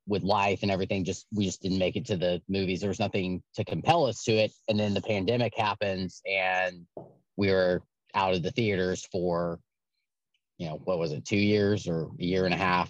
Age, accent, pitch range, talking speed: 30-49, American, 95-120 Hz, 220 wpm